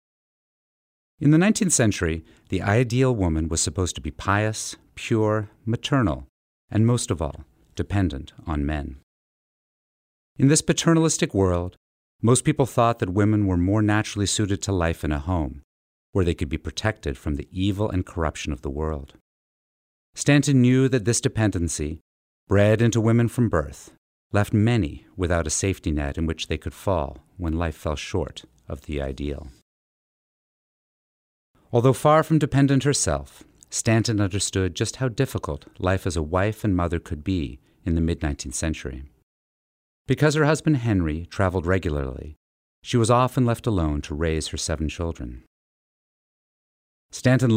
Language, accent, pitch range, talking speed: English, American, 75-115 Hz, 150 wpm